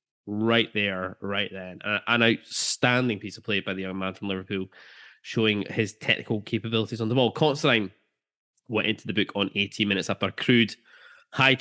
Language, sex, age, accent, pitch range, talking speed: English, male, 10-29, British, 95-120 Hz, 175 wpm